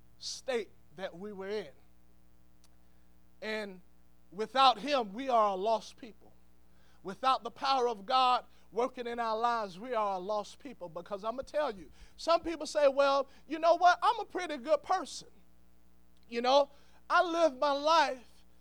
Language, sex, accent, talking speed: English, male, American, 165 wpm